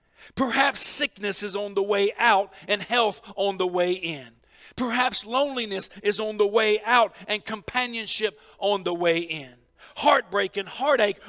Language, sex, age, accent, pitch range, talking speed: English, male, 50-69, American, 195-240 Hz, 155 wpm